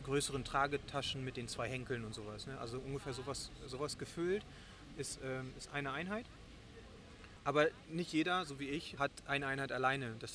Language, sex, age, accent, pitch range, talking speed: German, male, 30-49, German, 125-155 Hz, 160 wpm